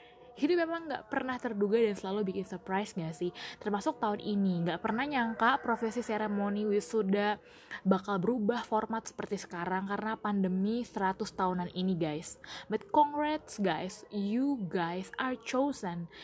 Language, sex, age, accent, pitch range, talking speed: Indonesian, female, 20-39, native, 185-225 Hz, 145 wpm